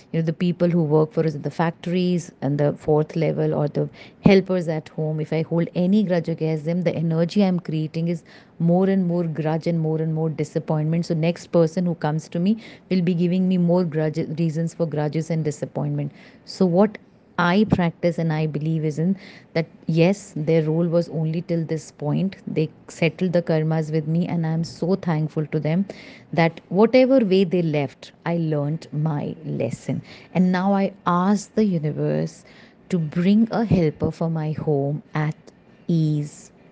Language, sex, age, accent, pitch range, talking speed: Hindi, female, 30-49, native, 155-185 Hz, 185 wpm